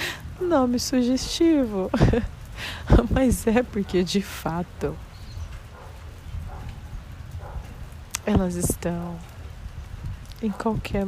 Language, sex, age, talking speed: Portuguese, female, 30-49, 60 wpm